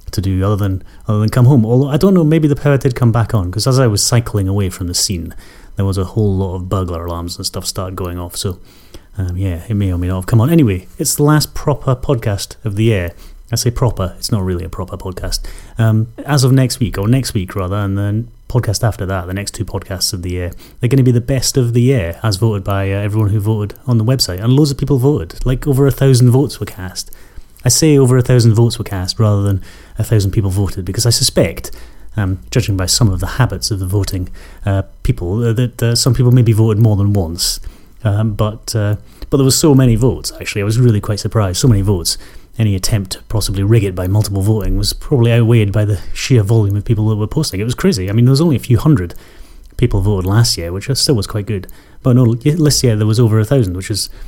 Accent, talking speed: British, 255 wpm